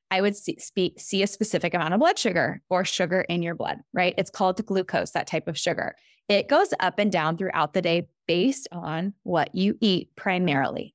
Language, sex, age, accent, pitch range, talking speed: English, female, 20-39, American, 180-255 Hz, 215 wpm